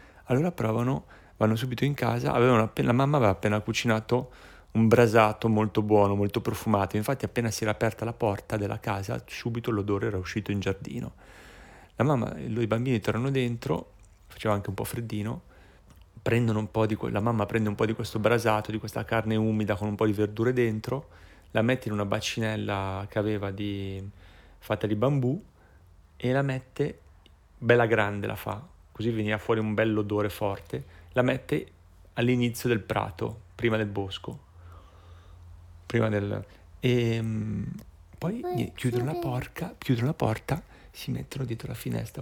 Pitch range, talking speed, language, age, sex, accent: 95-120 Hz, 165 wpm, Italian, 30-49, male, native